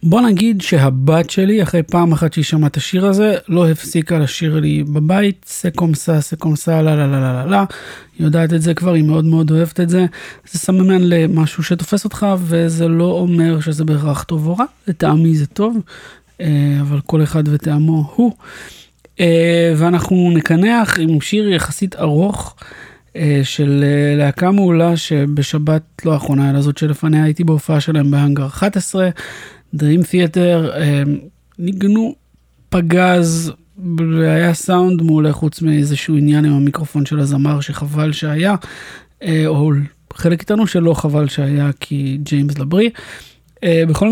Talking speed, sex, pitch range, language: 110 wpm, male, 150-175 Hz, English